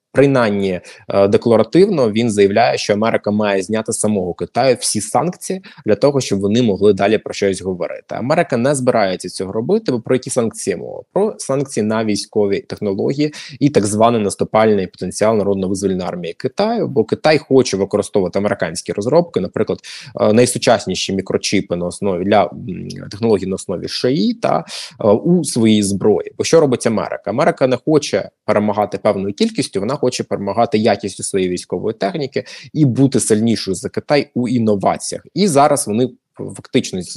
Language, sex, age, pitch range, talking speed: Ukrainian, male, 20-39, 100-140 Hz, 150 wpm